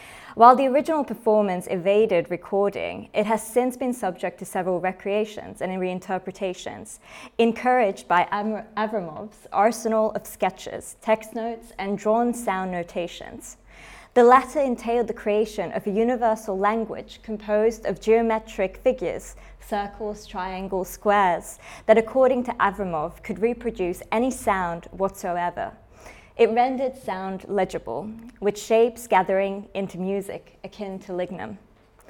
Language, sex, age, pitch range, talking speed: English, female, 20-39, 190-225 Hz, 120 wpm